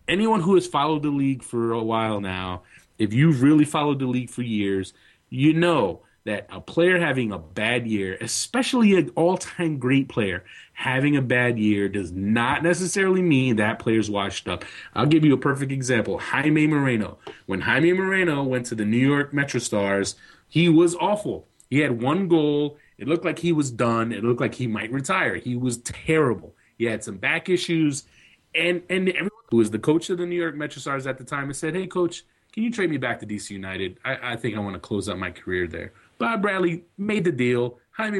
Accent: American